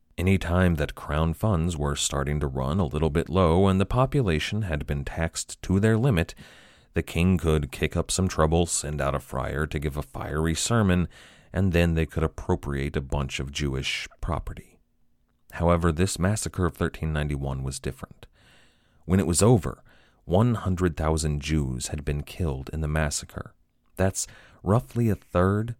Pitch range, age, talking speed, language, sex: 75-95 Hz, 30-49, 165 wpm, English, male